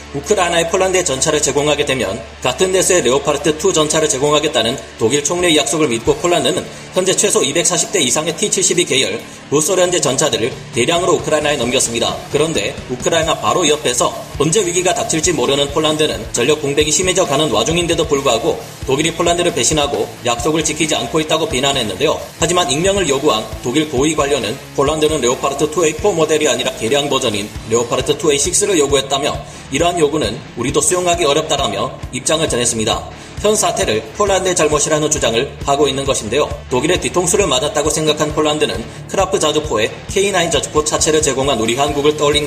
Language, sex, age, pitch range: Korean, male, 30-49, 140-175 Hz